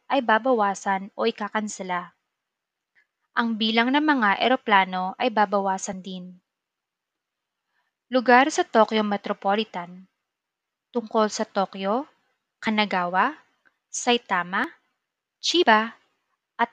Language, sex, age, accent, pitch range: Japanese, female, 20-39, Filipino, 195-255 Hz